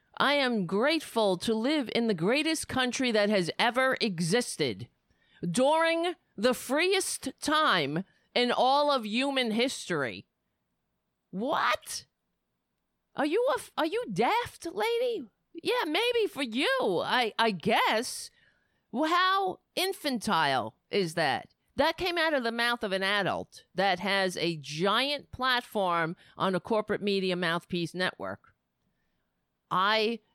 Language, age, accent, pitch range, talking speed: English, 40-59, American, 175-260 Hz, 120 wpm